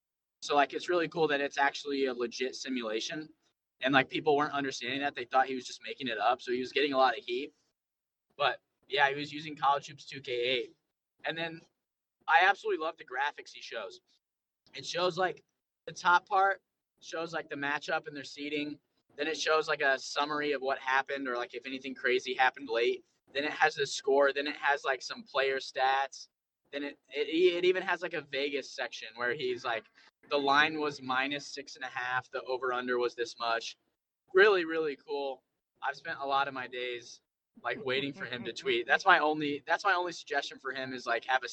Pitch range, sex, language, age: 130-165 Hz, male, English, 10-29